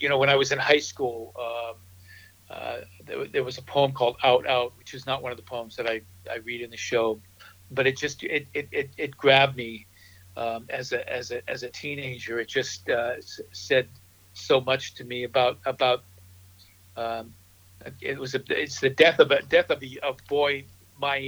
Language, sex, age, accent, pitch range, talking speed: English, male, 50-69, American, 100-135 Hz, 210 wpm